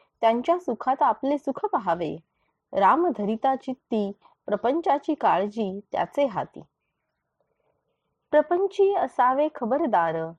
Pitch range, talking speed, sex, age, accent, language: 200-295 Hz, 85 wpm, female, 30-49, native, Marathi